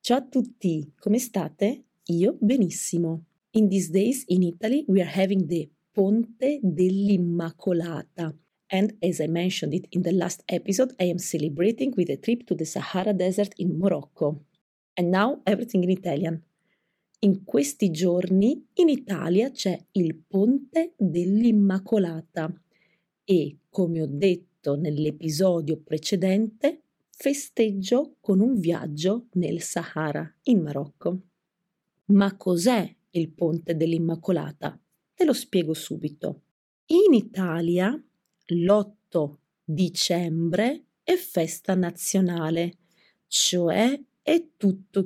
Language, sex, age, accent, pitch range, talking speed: English, female, 30-49, Italian, 170-210 Hz, 115 wpm